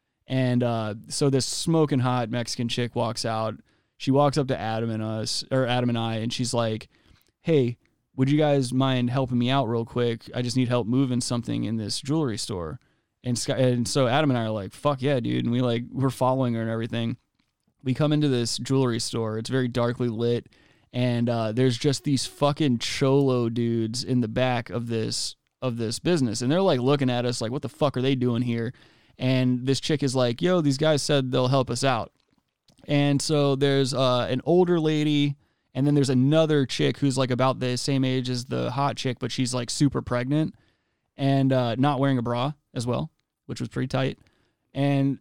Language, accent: English, American